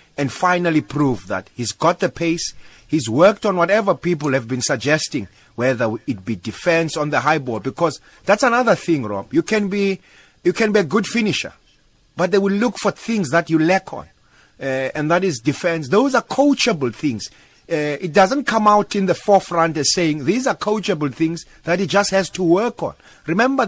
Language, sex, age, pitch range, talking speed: English, male, 30-49, 150-200 Hz, 200 wpm